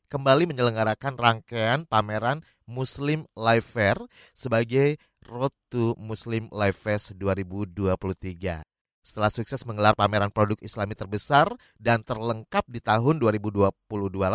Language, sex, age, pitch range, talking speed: Indonesian, male, 30-49, 105-135 Hz, 110 wpm